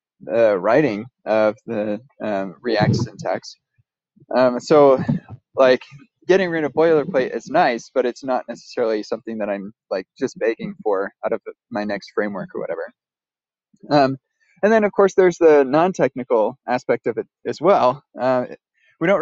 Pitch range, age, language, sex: 125-165 Hz, 20-39, English, male